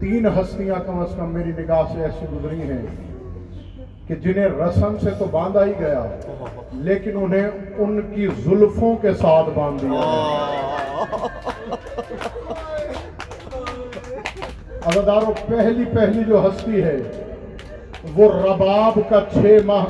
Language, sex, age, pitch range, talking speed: Urdu, male, 50-69, 180-240 Hz, 120 wpm